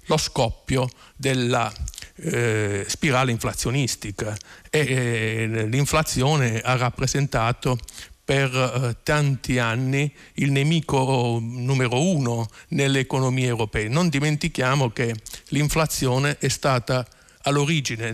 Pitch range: 120-150 Hz